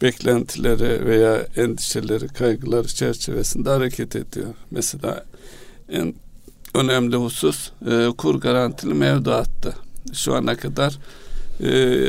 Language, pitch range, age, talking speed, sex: Turkish, 105-125 Hz, 60-79, 95 wpm, male